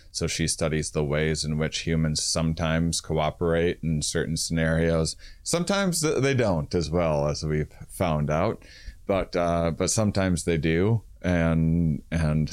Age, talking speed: 30-49, 145 wpm